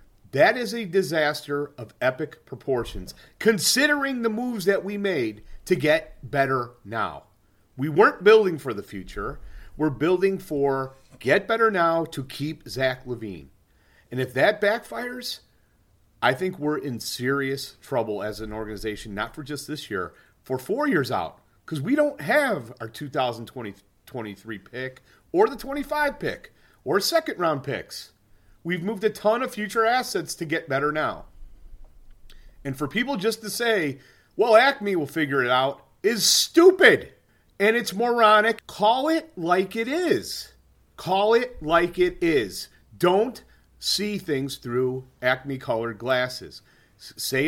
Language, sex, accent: English, male, American